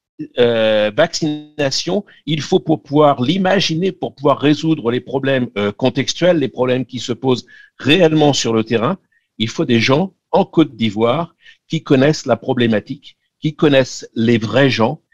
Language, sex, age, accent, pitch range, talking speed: French, male, 60-79, French, 125-155 Hz, 155 wpm